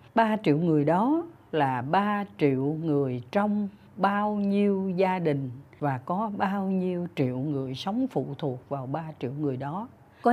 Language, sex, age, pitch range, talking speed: Vietnamese, female, 60-79, 140-205 Hz, 165 wpm